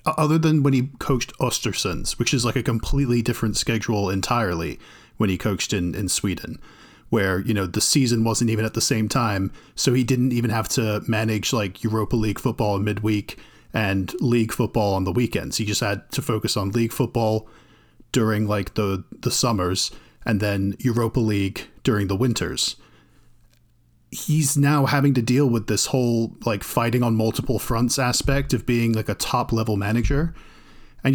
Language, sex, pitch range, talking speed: English, male, 110-130 Hz, 175 wpm